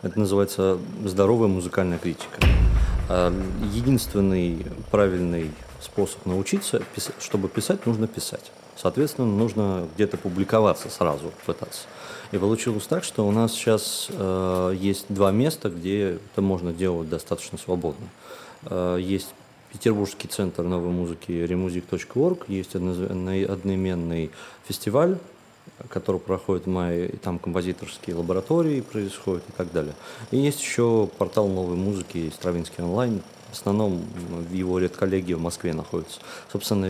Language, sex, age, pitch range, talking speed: Russian, male, 30-49, 90-105 Hz, 115 wpm